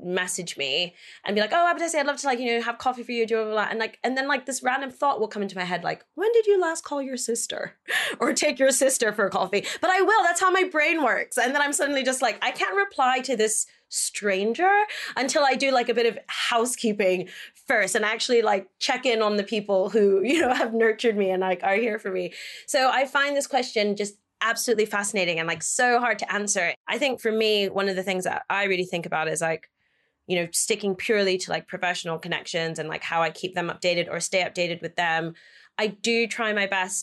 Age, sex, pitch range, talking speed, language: 20-39, female, 180-240 Hz, 245 wpm, English